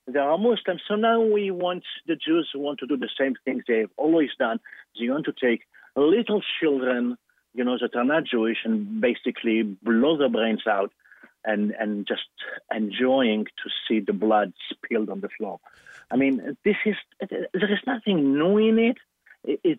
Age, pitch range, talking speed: 50-69, 125-210 Hz, 190 wpm